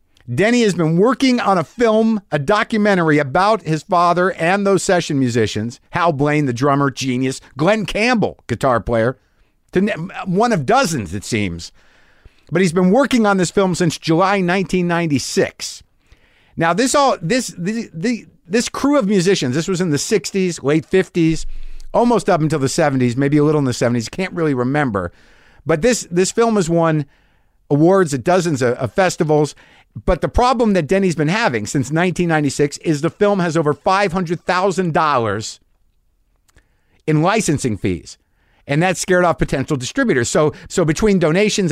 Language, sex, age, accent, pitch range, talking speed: English, male, 50-69, American, 140-195 Hz, 160 wpm